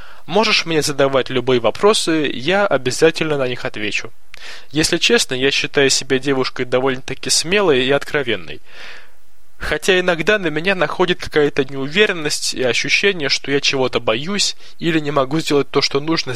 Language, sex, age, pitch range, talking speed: Russian, male, 20-39, 135-175 Hz, 145 wpm